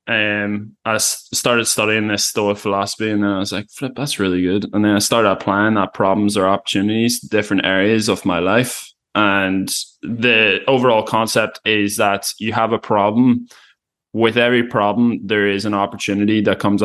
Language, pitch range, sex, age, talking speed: English, 100-110 Hz, male, 20-39, 180 wpm